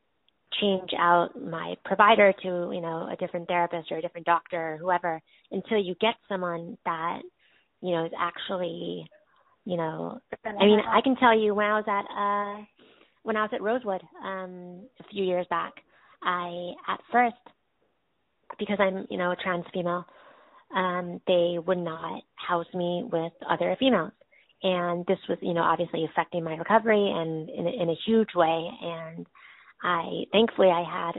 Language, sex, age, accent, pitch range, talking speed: English, female, 30-49, American, 170-200 Hz, 165 wpm